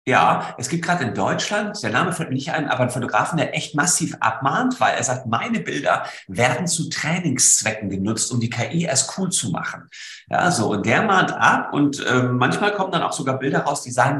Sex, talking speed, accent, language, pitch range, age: male, 220 wpm, German, German, 115-165 Hz, 50-69